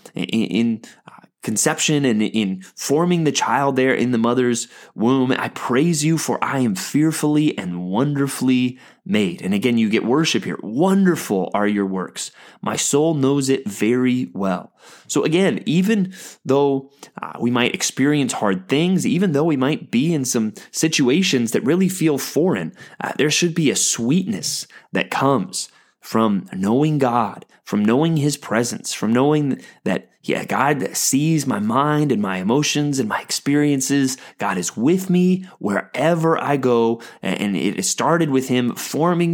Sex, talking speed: male, 155 wpm